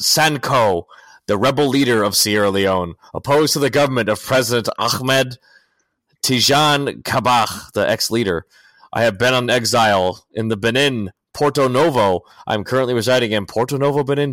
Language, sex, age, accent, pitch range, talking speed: English, male, 30-49, American, 110-140 Hz, 145 wpm